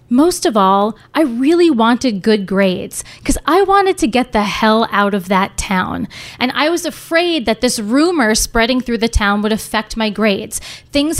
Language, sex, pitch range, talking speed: English, female, 205-270 Hz, 190 wpm